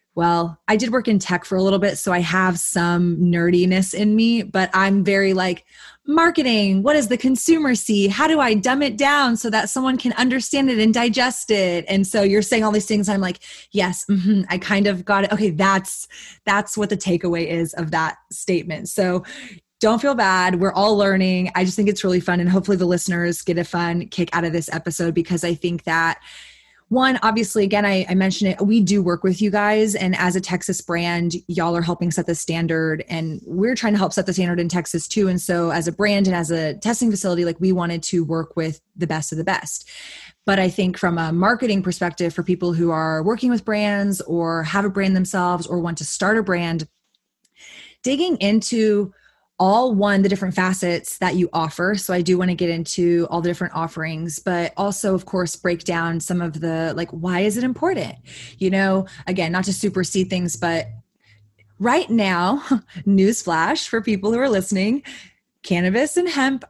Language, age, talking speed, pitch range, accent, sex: English, 20-39, 210 wpm, 175-210 Hz, American, female